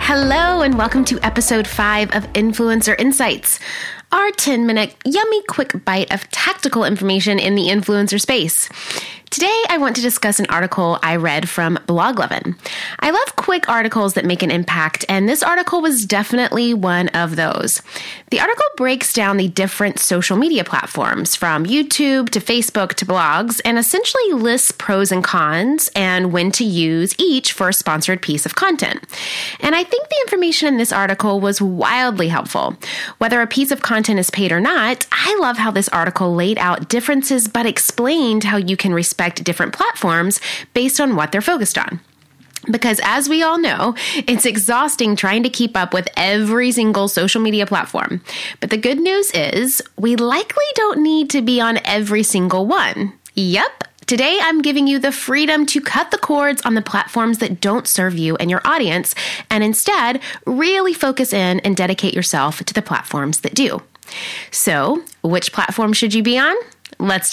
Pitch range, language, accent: 190-265 Hz, English, American